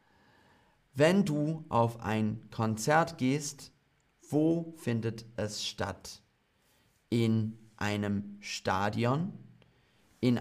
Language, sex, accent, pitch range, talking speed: German, male, German, 105-140 Hz, 80 wpm